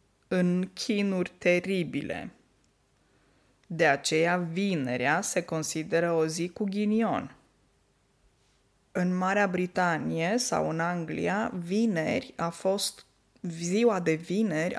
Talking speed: 95 wpm